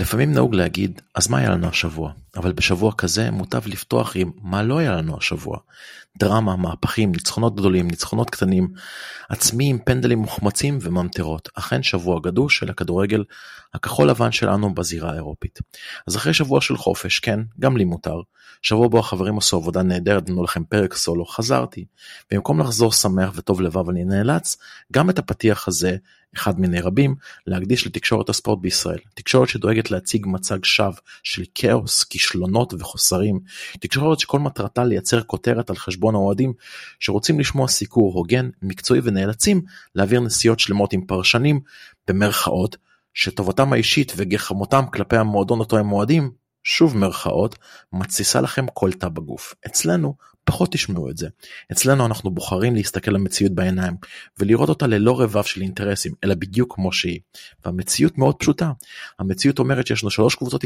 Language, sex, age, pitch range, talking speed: Hebrew, male, 30-49, 95-120 Hz, 140 wpm